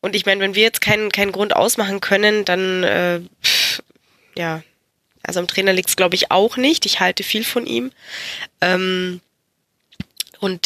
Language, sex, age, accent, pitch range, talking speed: German, female, 10-29, German, 180-210 Hz, 175 wpm